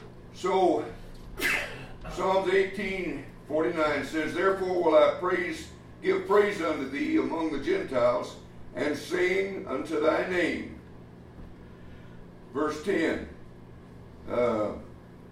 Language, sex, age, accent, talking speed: English, male, 60-79, American, 100 wpm